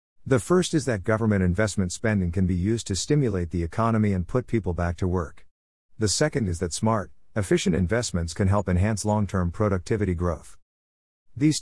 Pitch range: 85-110 Hz